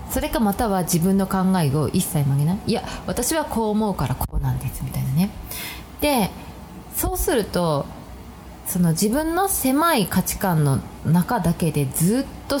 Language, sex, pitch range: Japanese, female, 160-260 Hz